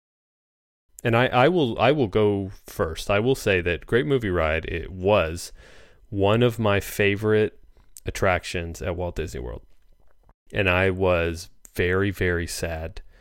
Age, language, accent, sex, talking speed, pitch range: 30-49, English, American, male, 145 wpm, 90-115 Hz